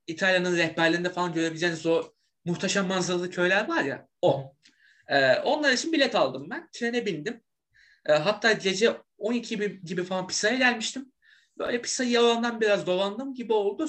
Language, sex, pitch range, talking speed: Turkish, male, 180-245 Hz, 150 wpm